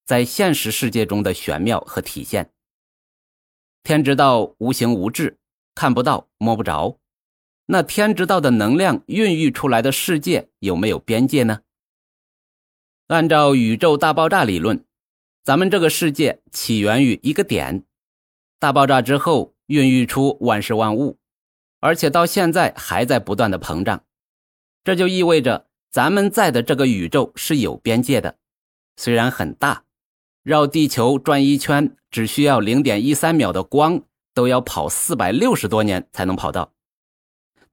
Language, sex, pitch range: Chinese, male, 110-160 Hz